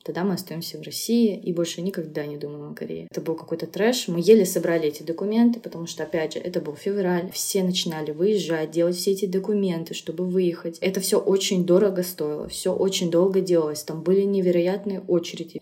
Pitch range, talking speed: 165-200 Hz, 190 wpm